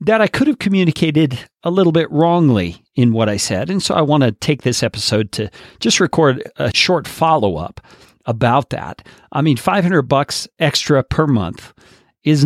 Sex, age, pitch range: male, 40-59, 105-150 Hz